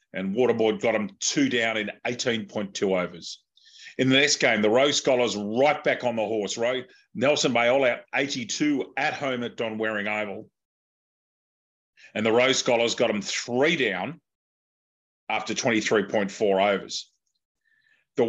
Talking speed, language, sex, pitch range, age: 150 wpm, English, male, 105-130 Hz, 40-59